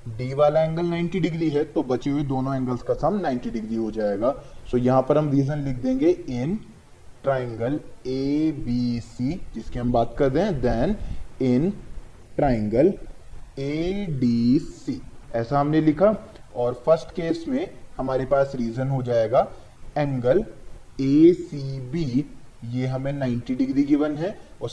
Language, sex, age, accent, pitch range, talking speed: Hindi, male, 20-39, native, 125-160 Hz, 135 wpm